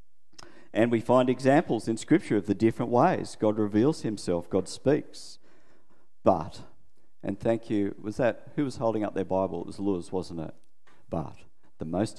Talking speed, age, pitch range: 170 wpm, 50-69, 90-120 Hz